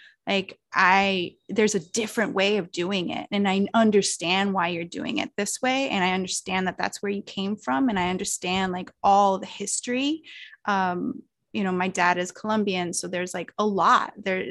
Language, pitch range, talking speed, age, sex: English, 185-220 Hz, 195 wpm, 20-39, female